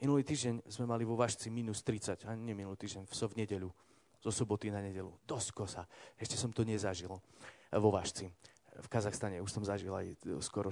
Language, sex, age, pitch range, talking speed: Slovak, male, 30-49, 100-115 Hz, 185 wpm